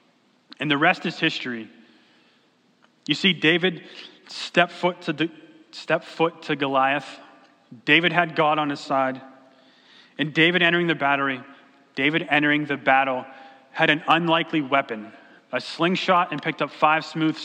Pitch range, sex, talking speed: 140-180 Hz, male, 140 wpm